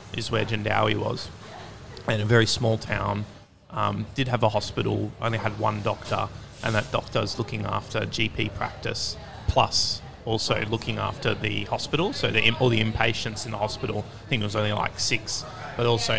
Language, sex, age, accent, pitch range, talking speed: English, male, 30-49, Australian, 105-120 Hz, 180 wpm